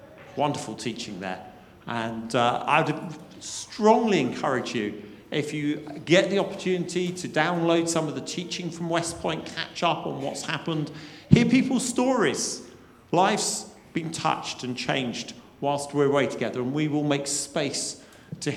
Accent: British